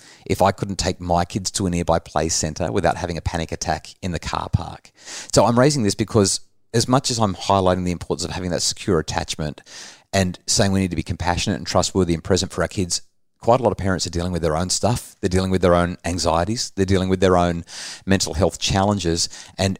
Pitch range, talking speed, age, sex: 85-100 Hz, 235 wpm, 30-49, male